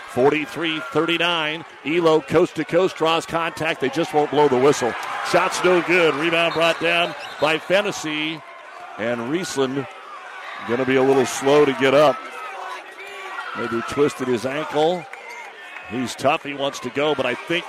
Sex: male